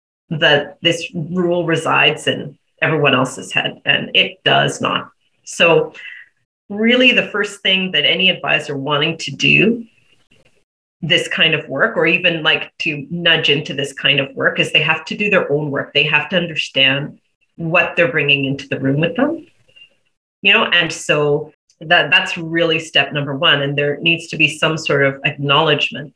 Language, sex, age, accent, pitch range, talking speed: English, female, 30-49, American, 145-185 Hz, 175 wpm